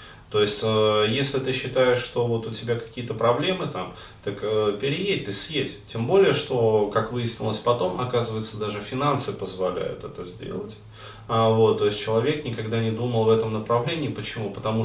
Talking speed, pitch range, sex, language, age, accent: 175 wpm, 105-130 Hz, male, Russian, 20-39, native